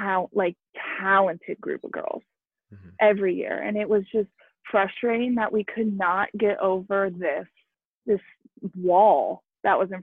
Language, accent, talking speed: English, American, 145 wpm